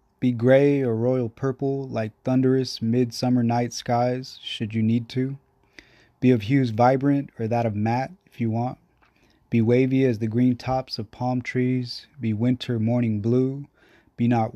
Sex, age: male, 20-39